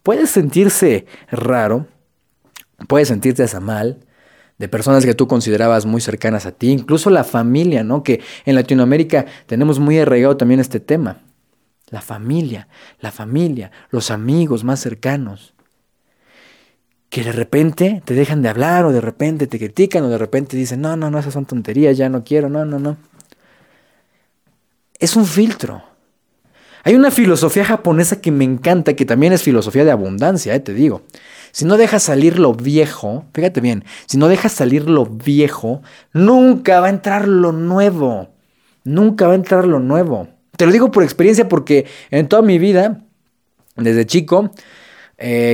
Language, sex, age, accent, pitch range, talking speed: Spanish, male, 30-49, Mexican, 125-175 Hz, 160 wpm